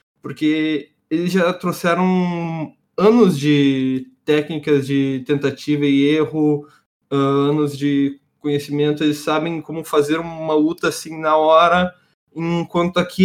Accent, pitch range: Brazilian, 145-180 Hz